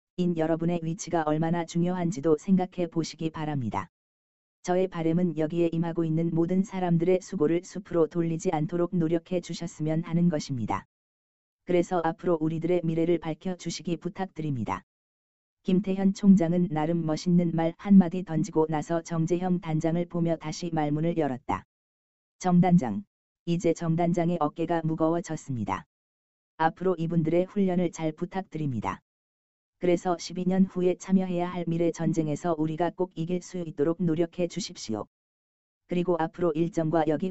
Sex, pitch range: female, 155-180 Hz